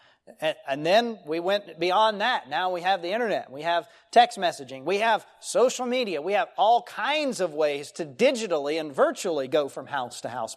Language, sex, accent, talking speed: English, male, American, 195 wpm